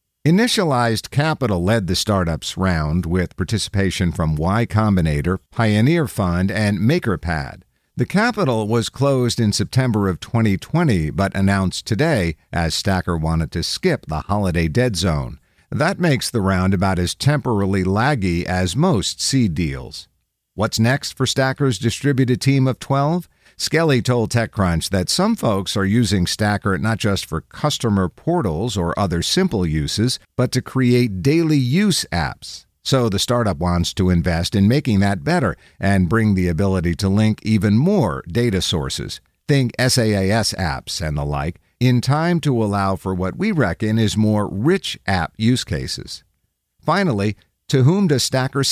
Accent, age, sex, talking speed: American, 50-69, male, 155 wpm